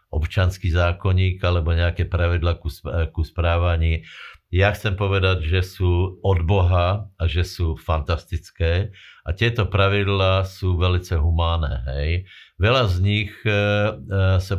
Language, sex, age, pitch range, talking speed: Slovak, male, 60-79, 85-95 Hz, 120 wpm